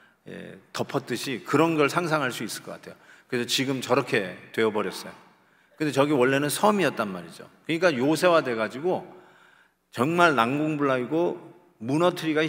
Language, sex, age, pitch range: Korean, male, 40-59, 130-175 Hz